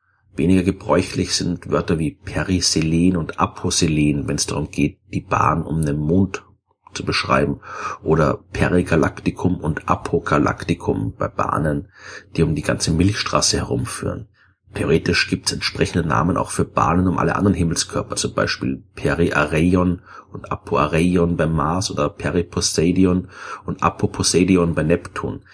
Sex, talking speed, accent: male, 130 wpm, German